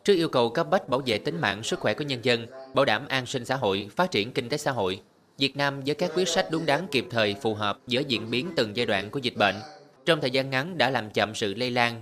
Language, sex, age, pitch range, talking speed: Vietnamese, male, 20-39, 115-145 Hz, 285 wpm